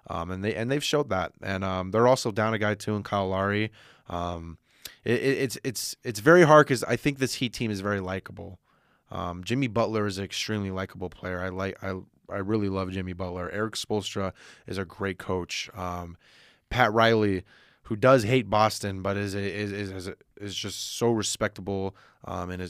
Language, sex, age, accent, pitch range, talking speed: English, male, 20-39, American, 95-115 Hz, 200 wpm